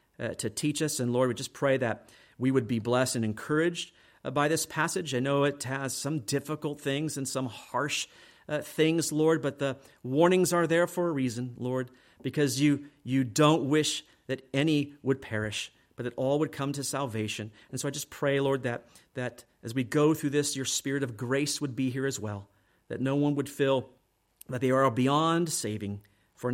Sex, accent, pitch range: male, American, 125-155 Hz